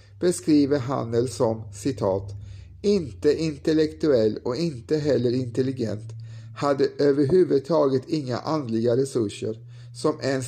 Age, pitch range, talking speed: 50-69, 120-155 Hz, 95 wpm